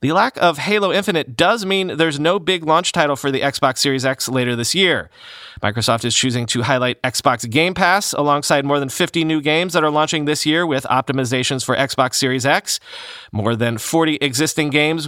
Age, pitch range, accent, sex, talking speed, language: 30-49, 125-160 Hz, American, male, 200 wpm, English